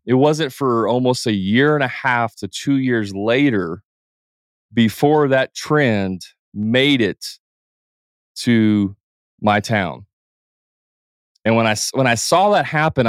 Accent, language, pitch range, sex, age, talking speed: American, English, 110-140 Hz, male, 30-49, 135 wpm